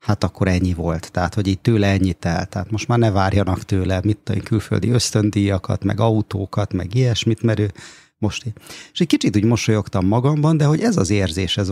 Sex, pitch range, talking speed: male, 95-115 Hz, 200 wpm